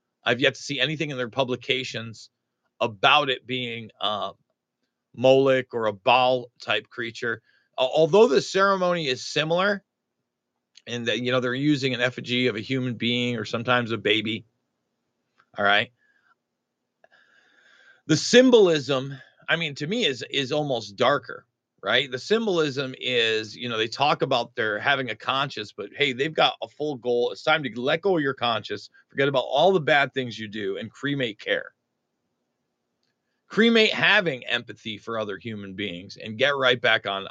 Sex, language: male, English